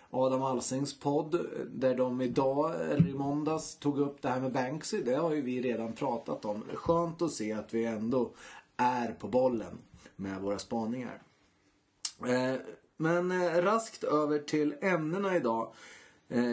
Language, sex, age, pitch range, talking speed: Swedish, male, 30-49, 120-150 Hz, 145 wpm